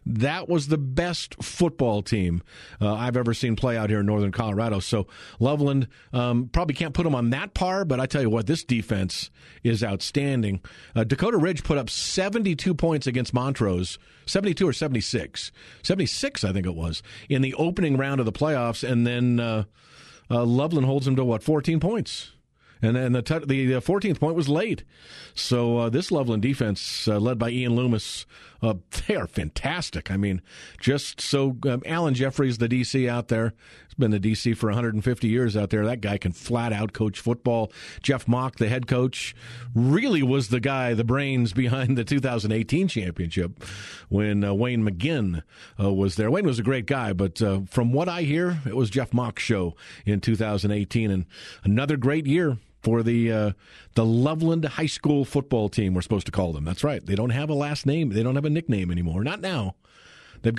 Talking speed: 195 wpm